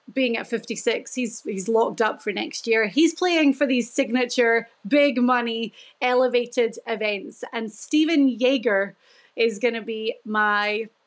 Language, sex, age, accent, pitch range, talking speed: English, female, 30-49, British, 225-275 Hz, 145 wpm